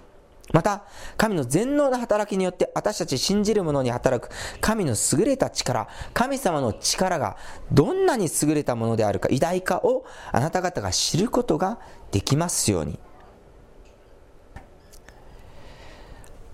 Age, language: 40-59, Japanese